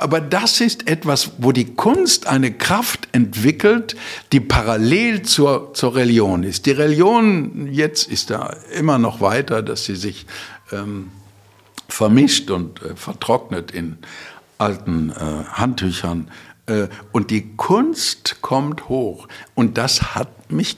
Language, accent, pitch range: German, German, 100-135 Hz